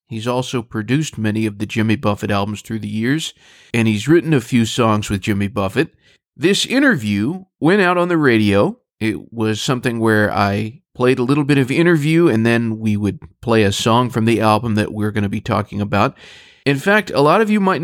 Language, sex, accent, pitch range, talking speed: English, male, American, 110-155 Hz, 210 wpm